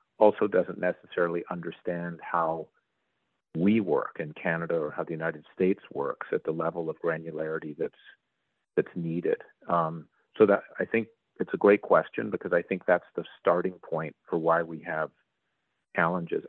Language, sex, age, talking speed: English, male, 40-59, 160 wpm